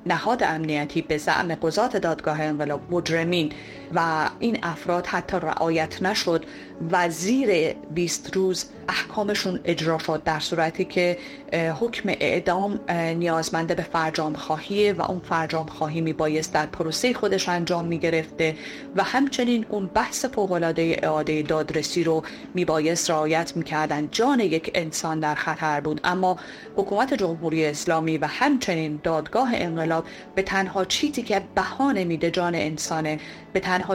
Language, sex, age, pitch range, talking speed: Persian, female, 30-49, 160-195 Hz, 135 wpm